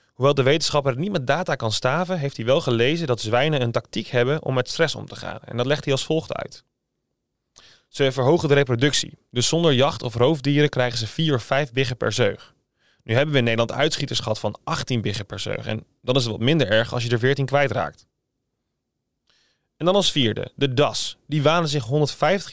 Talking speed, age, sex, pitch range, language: 220 wpm, 30-49, male, 120-150 Hz, Dutch